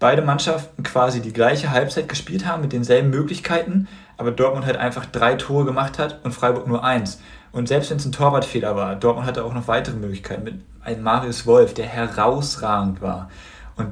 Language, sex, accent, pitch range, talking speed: German, male, German, 110-135 Hz, 190 wpm